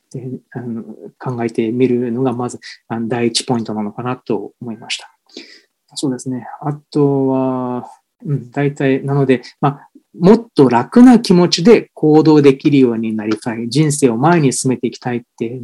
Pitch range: 120-165 Hz